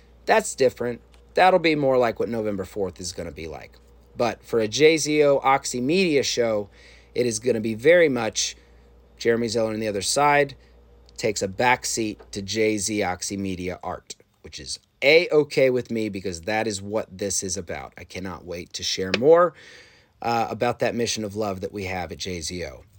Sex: male